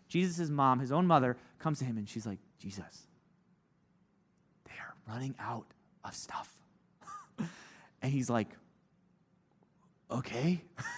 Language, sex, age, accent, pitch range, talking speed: English, male, 30-49, American, 170-225 Hz, 120 wpm